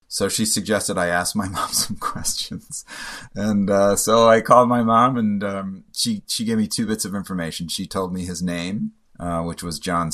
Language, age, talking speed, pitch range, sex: English, 30-49, 205 wpm, 85-105 Hz, male